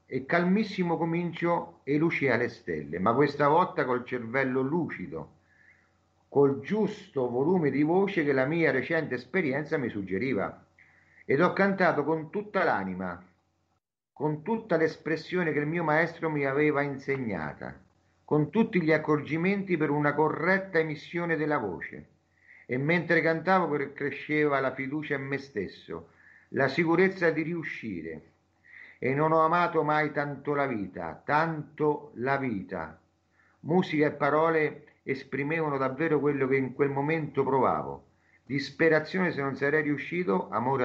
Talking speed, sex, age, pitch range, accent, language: 135 wpm, male, 50-69, 125-165 Hz, native, Italian